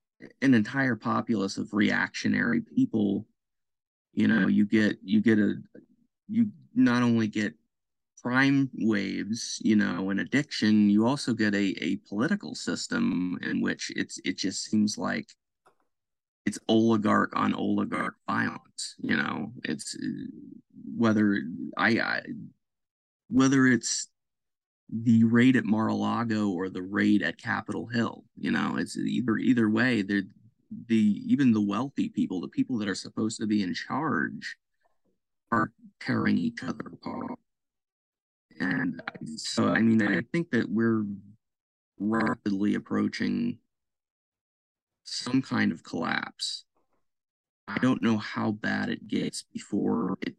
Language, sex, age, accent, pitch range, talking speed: English, male, 30-49, American, 105-140 Hz, 130 wpm